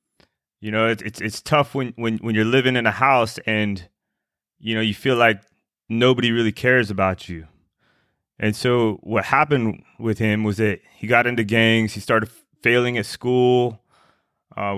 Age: 20-39